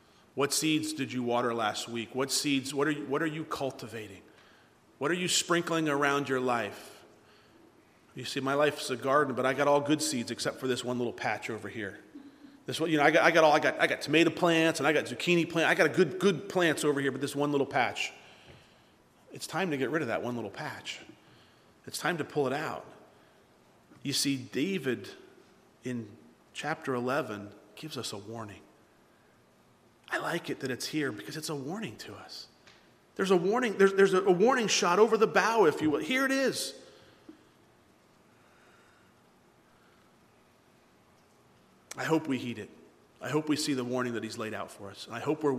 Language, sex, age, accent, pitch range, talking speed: English, male, 40-59, American, 125-155 Hz, 195 wpm